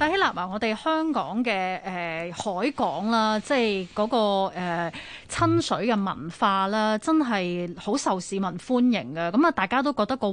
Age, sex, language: 20-39, female, Chinese